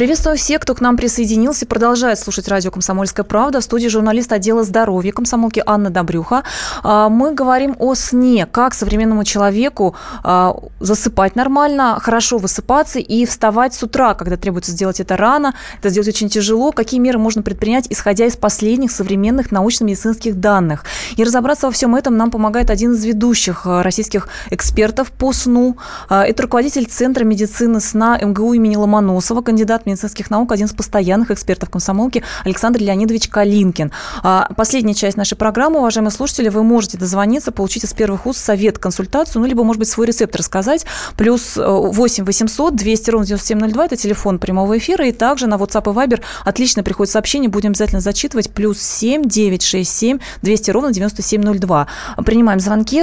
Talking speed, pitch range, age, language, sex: 160 wpm, 200-245 Hz, 20-39, Russian, female